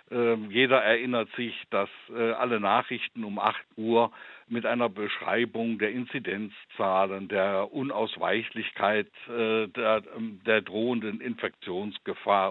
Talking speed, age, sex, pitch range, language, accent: 95 wpm, 60-79, male, 115-130 Hz, German, German